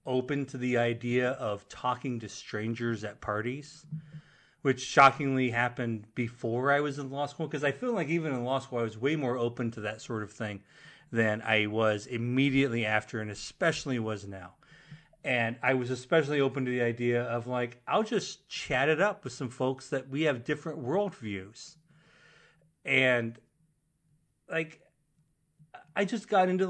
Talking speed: 170 wpm